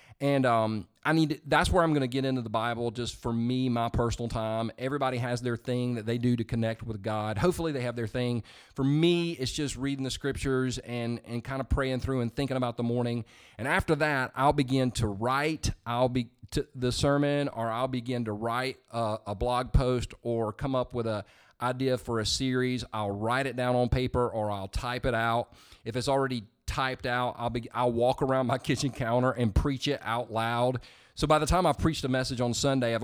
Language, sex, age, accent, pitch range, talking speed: English, male, 40-59, American, 115-135 Hz, 225 wpm